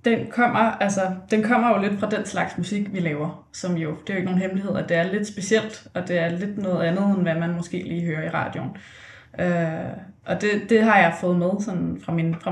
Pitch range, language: 175-215 Hz, Danish